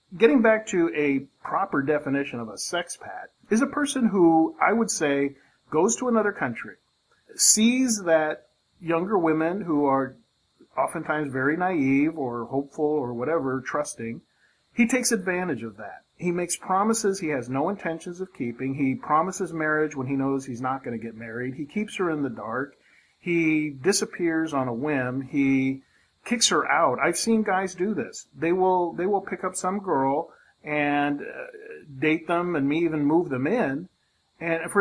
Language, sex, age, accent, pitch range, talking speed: English, male, 40-59, American, 140-195 Hz, 175 wpm